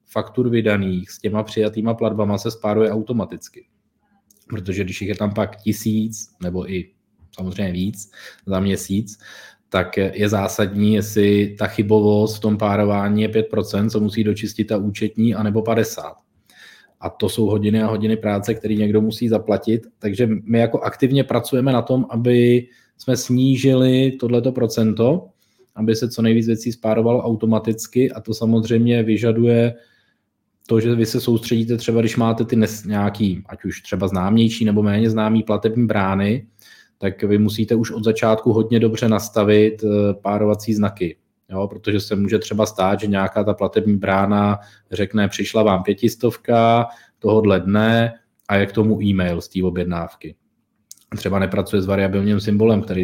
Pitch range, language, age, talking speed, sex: 100-115 Hz, Czech, 20-39, 150 wpm, male